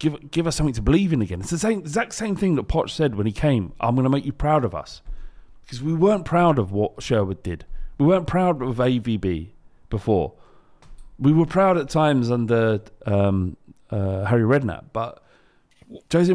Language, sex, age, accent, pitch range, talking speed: English, male, 40-59, British, 105-135 Hz, 200 wpm